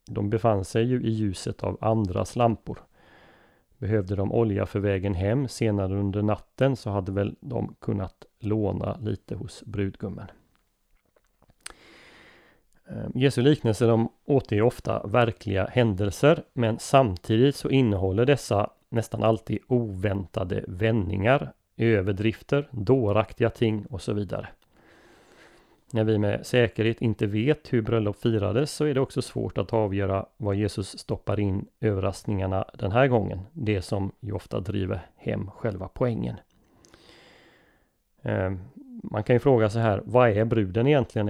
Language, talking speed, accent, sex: Swedish, 130 wpm, native, male